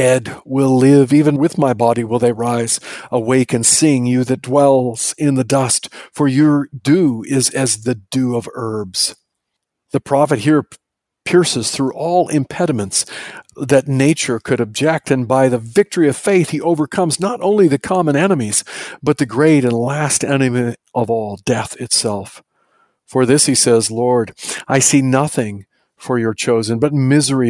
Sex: male